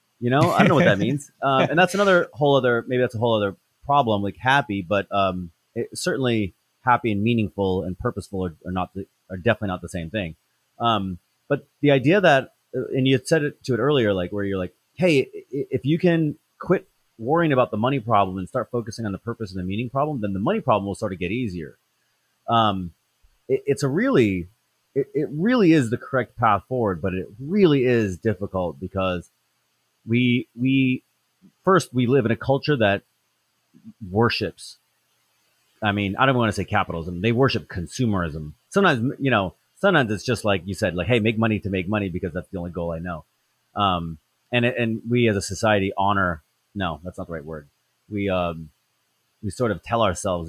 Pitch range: 95-130 Hz